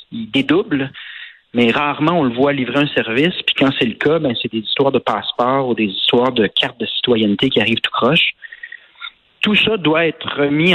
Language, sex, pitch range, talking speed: French, male, 125-165 Hz, 205 wpm